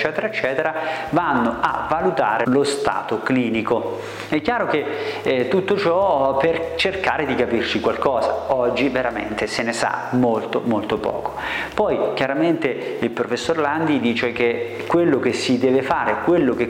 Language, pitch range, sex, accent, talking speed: Italian, 125-170 Hz, male, native, 145 wpm